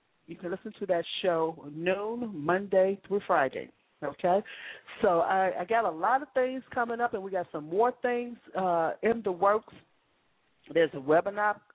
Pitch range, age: 155-200 Hz, 40-59